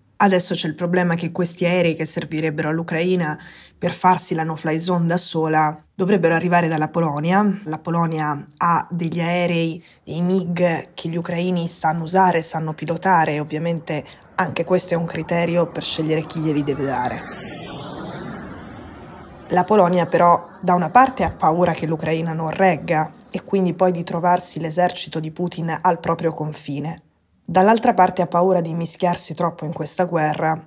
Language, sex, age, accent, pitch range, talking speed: Italian, female, 20-39, native, 155-180 Hz, 155 wpm